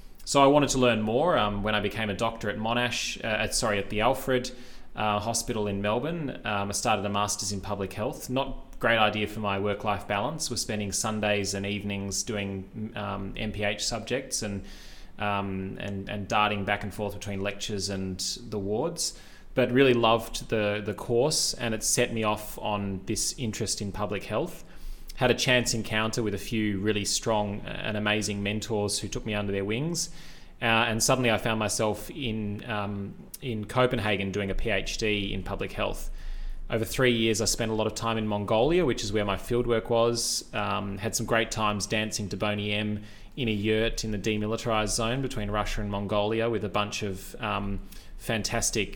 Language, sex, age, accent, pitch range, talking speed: English, male, 20-39, Australian, 100-115 Hz, 190 wpm